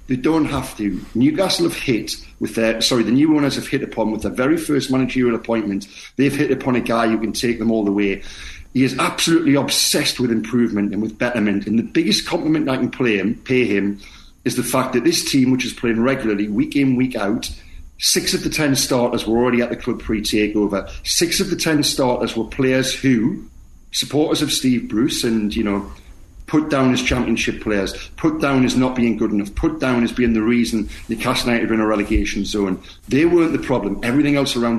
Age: 50-69